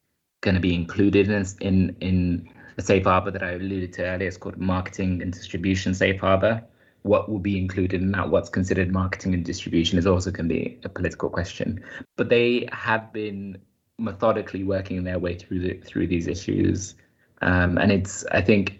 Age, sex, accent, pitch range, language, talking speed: 20-39, male, British, 90-105 Hz, English, 190 wpm